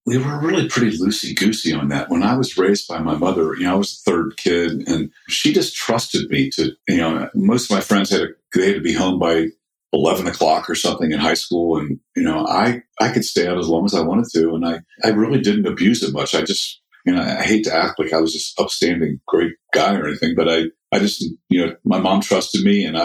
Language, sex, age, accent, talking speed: English, male, 50-69, American, 255 wpm